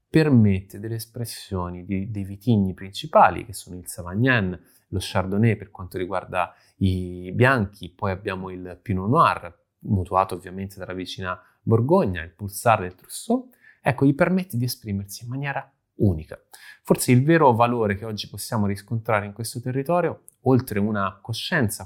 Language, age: Italian, 30-49